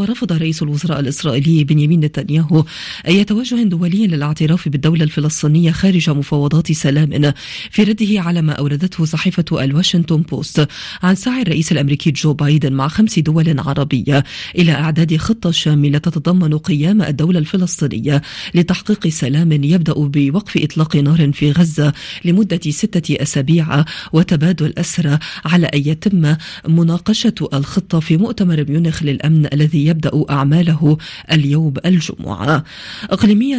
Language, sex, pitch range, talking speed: Arabic, female, 150-175 Hz, 125 wpm